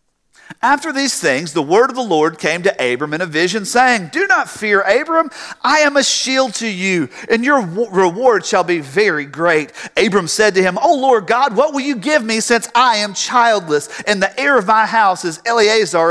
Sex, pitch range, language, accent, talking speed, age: male, 195-280 Hz, English, American, 210 wpm, 40-59